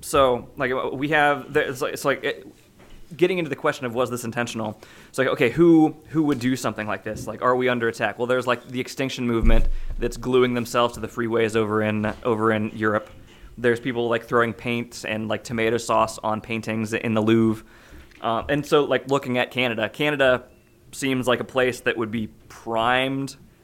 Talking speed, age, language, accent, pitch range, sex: 205 wpm, 20-39, English, American, 115-135 Hz, male